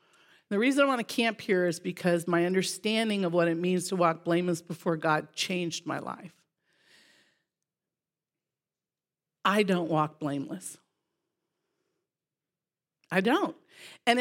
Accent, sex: American, female